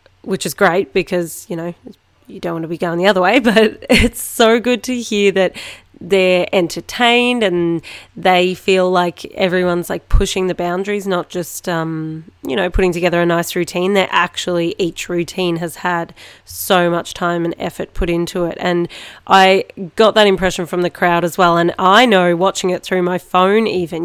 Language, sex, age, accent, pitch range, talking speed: English, female, 30-49, Australian, 175-195 Hz, 190 wpm